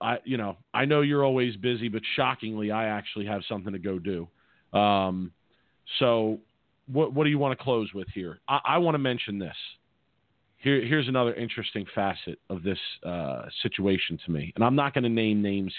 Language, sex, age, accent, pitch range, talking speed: English, male, 40-59, American, 95-115 Hz, 200 wpm